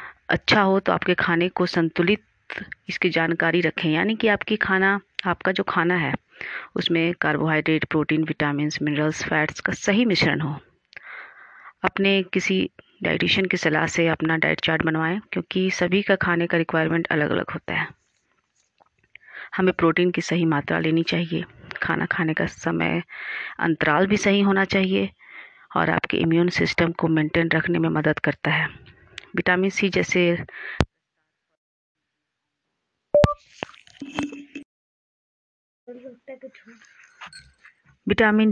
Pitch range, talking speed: 160-205 Hz, 125 wpm